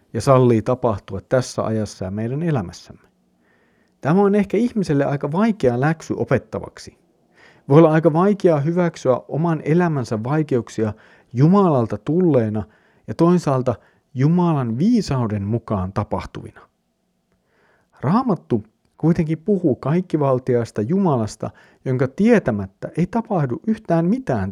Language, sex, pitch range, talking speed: Finnish, male, 110-165 Hz, 105 wpm